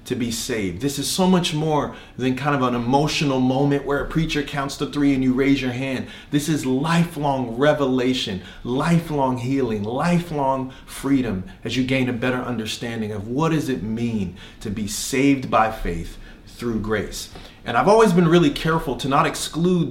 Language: English